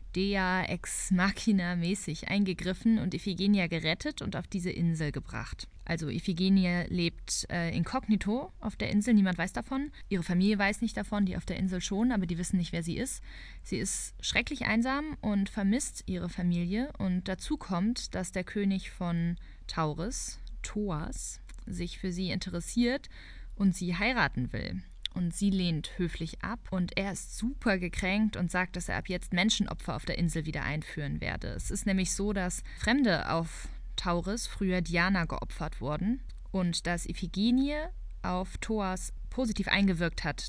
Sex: female